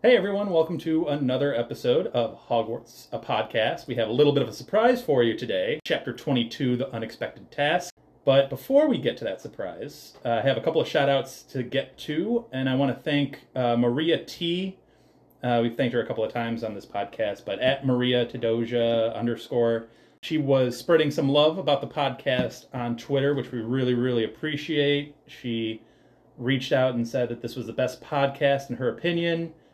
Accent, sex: American, male